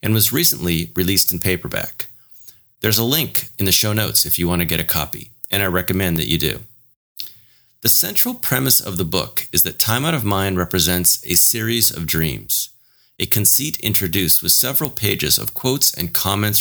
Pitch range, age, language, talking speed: 90-120 Hz, 30-49, English, 190 wpm